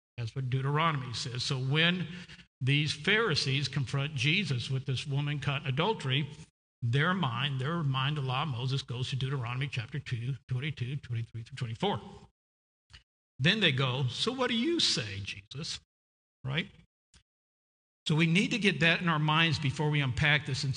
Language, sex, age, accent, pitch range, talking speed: English, male, 50-69, American, 130-160 Hz, 165 wpm